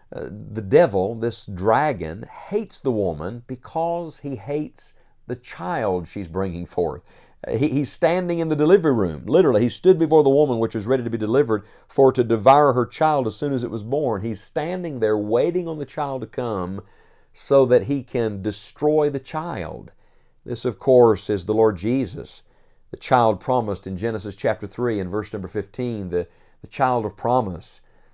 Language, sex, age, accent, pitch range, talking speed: English, male, 50-69, American, 105-145 Hz, 180 wpm